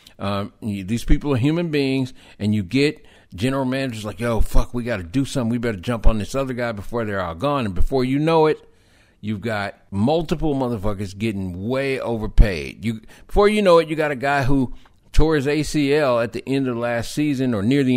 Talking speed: 220 wpm